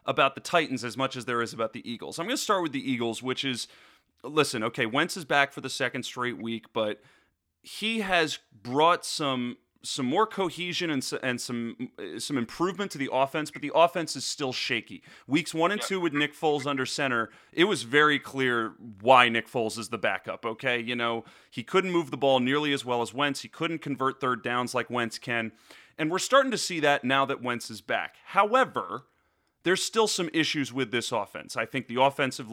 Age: 30-49